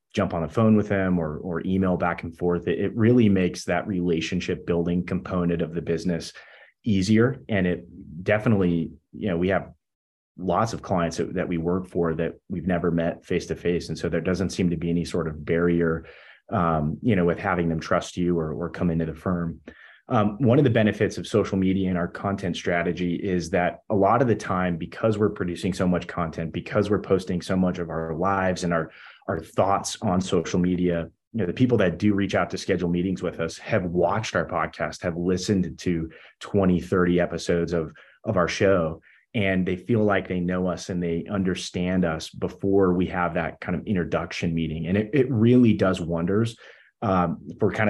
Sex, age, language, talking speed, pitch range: male, 30-49, English, 205 wpm, 85-95 Hz